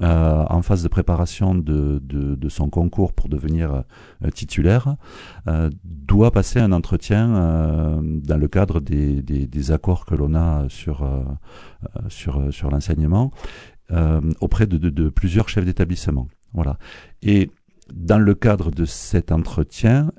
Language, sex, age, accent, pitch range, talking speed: French, male, 50-69, French, 75-95 Hz, 150 wpm